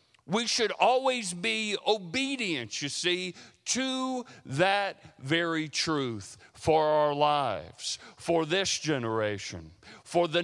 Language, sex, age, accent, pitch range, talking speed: English, male, 50-69, American, 120-175 Hz, 110 wpm